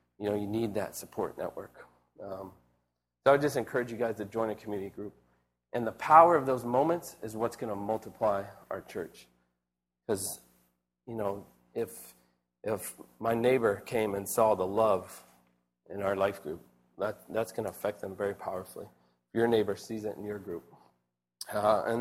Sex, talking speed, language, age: male, 175 wpm, English, 40-59